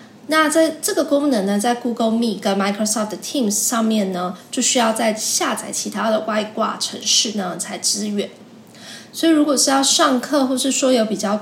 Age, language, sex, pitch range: 20-39, Chinese, female, 205-240 Hz